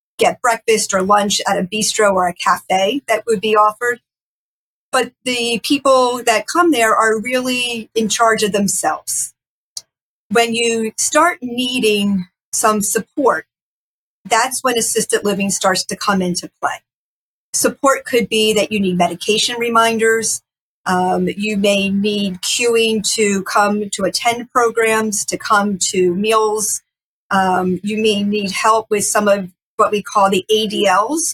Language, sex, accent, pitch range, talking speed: English, female, American, 200-235 Hz, 145 wpm